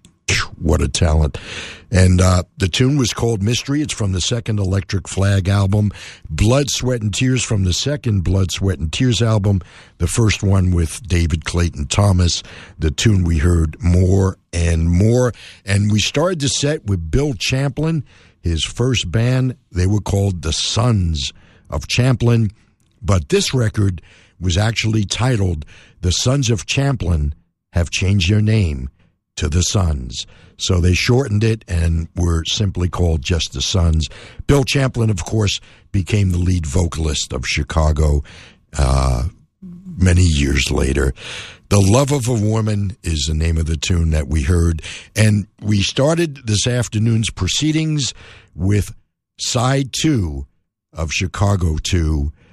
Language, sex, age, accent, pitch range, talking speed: English, male, 60-79, American, 85-110 Hz, 145 wpm